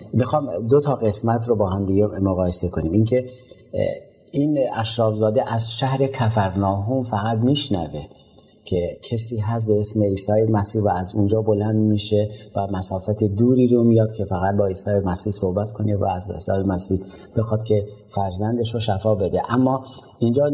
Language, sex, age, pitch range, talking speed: Persian, male, 30-49, 100-120 Hz, 160 wpm